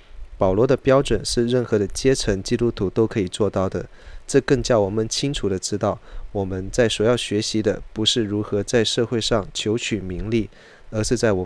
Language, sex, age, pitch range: Chinese, male, 20-39, 100-120 Hz